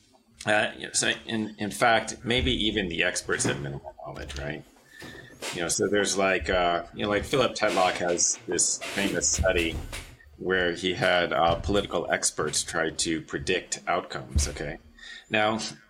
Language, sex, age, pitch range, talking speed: English, male, 30-49, 85-110 Hz, 150 wpm